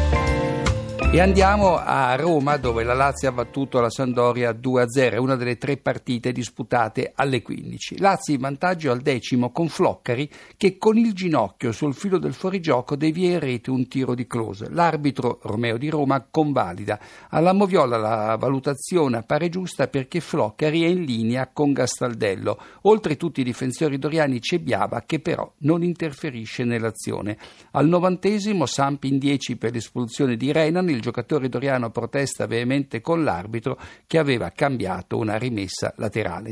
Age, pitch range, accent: 50-69, 115-150 Hz, native